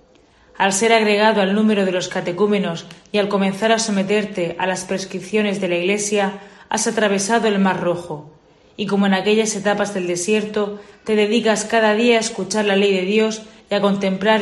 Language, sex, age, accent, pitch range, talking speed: Spanish, female, 30-49, Spanish, 190-210 Hz, 185 wpm